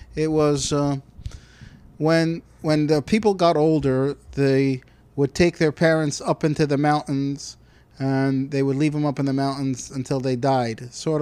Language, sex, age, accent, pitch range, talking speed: English, male, 30-49, American, 135-185 Hz, 165 wpm